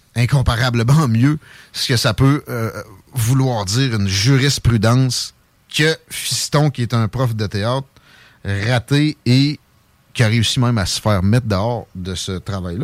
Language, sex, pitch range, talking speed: French, male, 110-150 Hz, 155 wpm